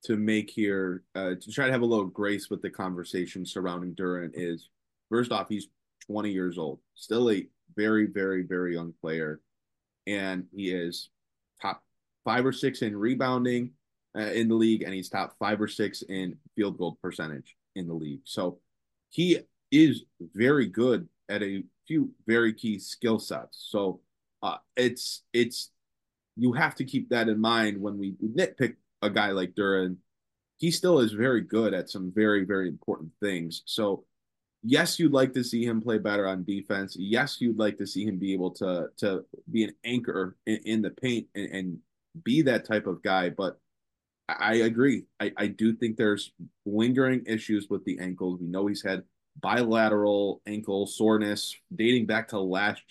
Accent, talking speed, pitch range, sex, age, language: American, 175 wpm, 95-115 Hz, male, 20-39, English